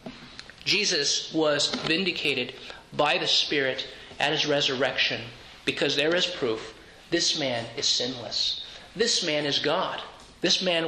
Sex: male